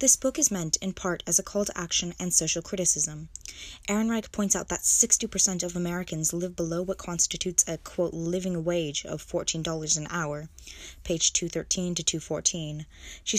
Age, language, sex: 10-29, English, female